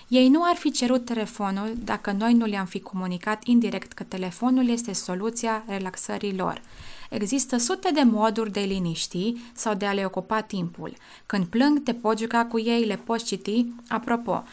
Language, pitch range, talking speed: Romanian, 205-250 Hz, 175 wpm